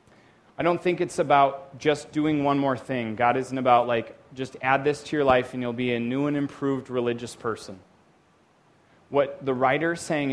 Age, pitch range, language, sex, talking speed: 30-49, 125-155 Hz, English, male, 200 wpm